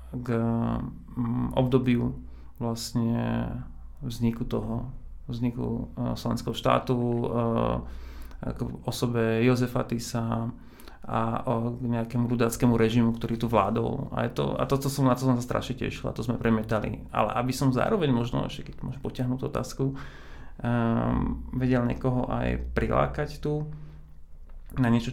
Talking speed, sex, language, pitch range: 135 wpm, male, Slovak, 115-125 Hz